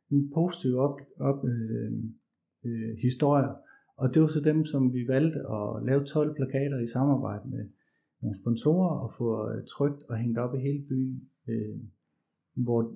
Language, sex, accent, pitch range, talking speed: Danish, male, native, 115-140 Hz, 155 wpm